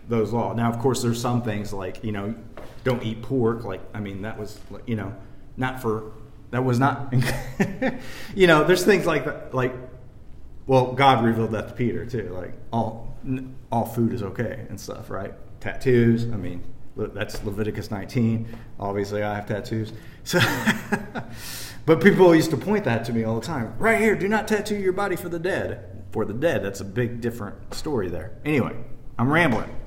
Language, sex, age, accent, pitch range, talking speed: English, male, 30-49, American, 115-160 Hz, 185 wpm